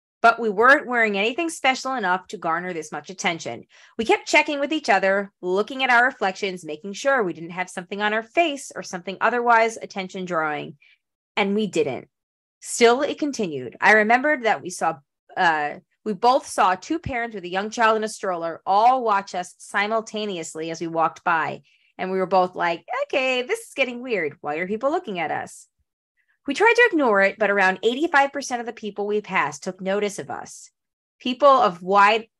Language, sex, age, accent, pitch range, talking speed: English, female, 20-39, American, 185-240 Hz, 195 wpm